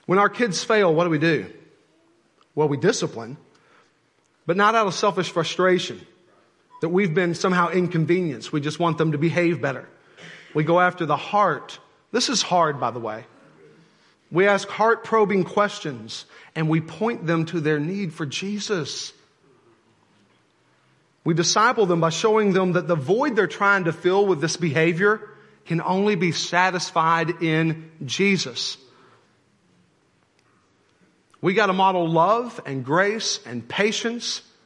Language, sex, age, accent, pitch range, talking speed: English, male, 40-59, American, 145-190 Hz, 145 wpm